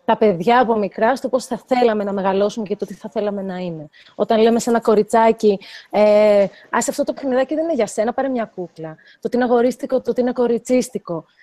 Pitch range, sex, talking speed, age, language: 200-260 Hz, female, 220 wpm, 30-49, Greek